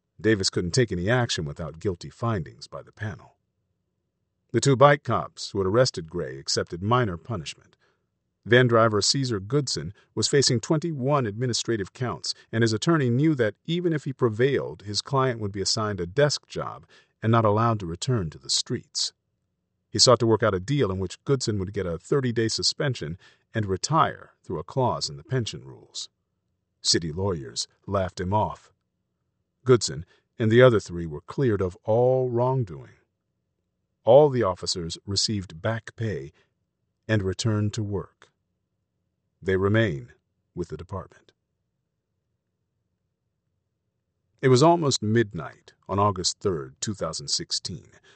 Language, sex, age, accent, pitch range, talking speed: Indonesian, male, 40-59, American, 95-125 Hz, 145 wpm